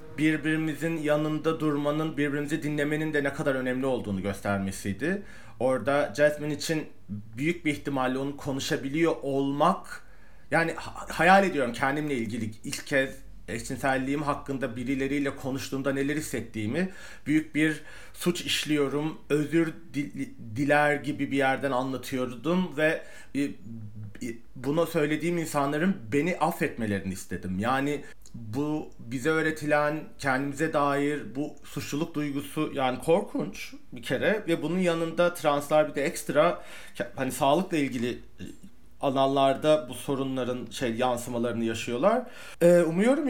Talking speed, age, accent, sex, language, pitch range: 110 wpm, 40-59, native, male, Turkish, 135-155 Hz